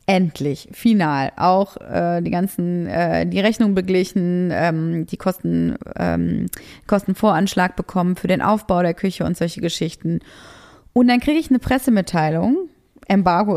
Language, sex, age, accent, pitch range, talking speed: German, female, 20-39, German, 180-225 Hz, 135 wpm